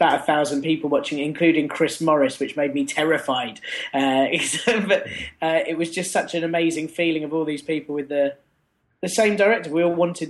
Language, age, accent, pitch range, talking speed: English, 20-39, British, 150-180 Hz, 200 wpm